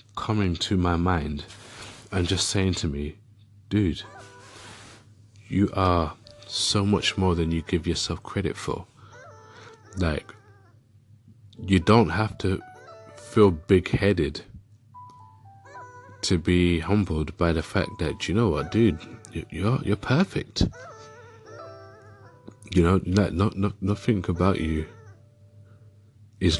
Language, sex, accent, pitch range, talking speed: English, male, British, 90-110 Hz, 115 wpm